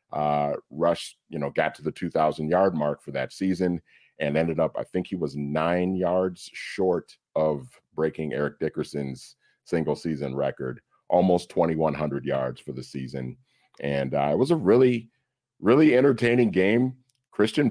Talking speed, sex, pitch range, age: 155 wpm, male, 75-110 Hz, 40-59